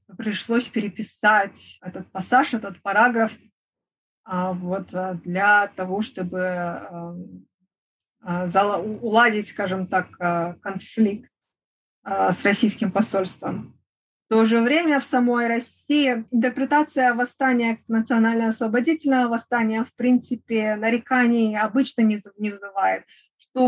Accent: native